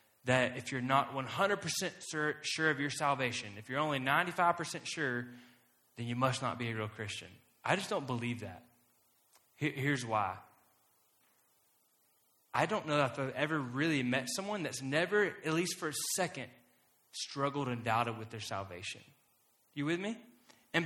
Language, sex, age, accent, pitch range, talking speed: English, male, 20-39, American, 125-195 Hz, 160 wpm